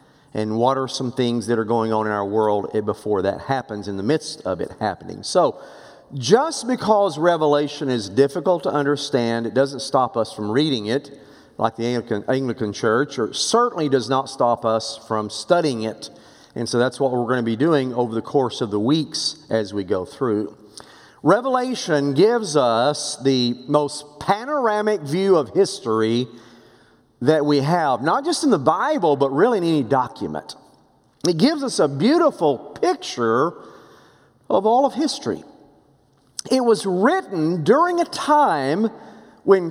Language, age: English, 40-59